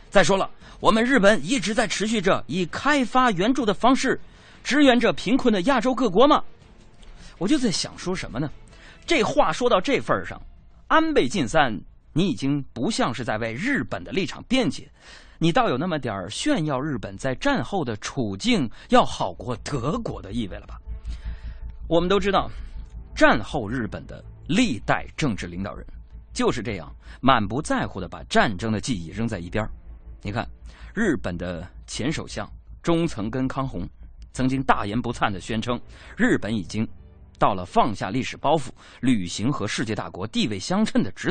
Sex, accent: male, native